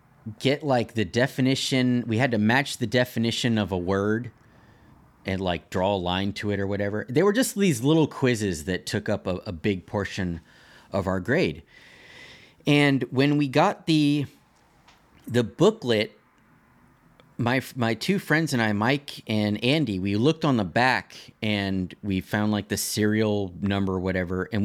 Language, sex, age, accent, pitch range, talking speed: English, male, 30-49, American, 100-135 Hz, 165 wpm